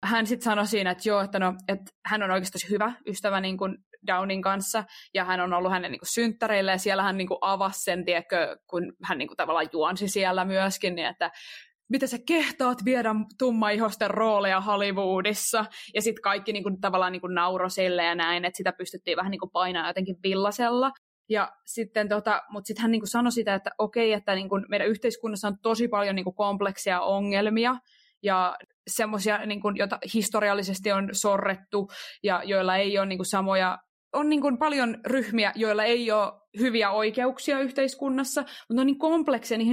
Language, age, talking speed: Finnish, 20-39, 140 wpm